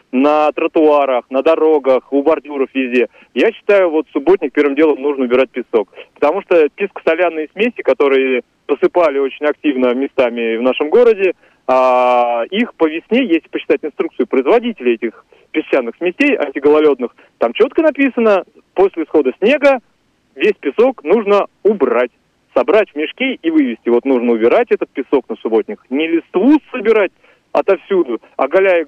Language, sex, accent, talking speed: Russian, male, native, 140 wpm